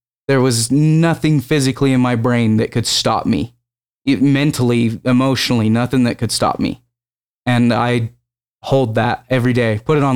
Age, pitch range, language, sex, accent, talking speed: 20-39, 120-135 Hz, English, male, American, 165 wpm